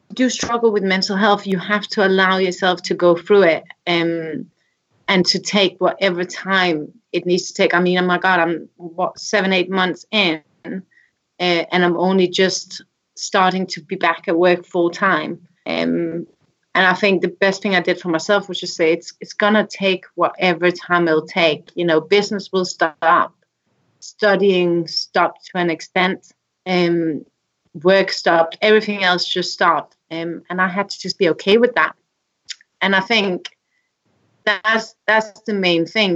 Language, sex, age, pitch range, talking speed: English, female, 30-49, 175-200 Hz, 180 wpm